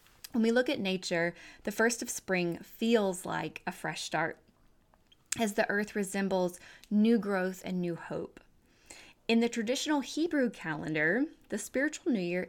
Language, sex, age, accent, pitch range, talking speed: English, female, 20-39, American, 180-230 Hz, 155 wpm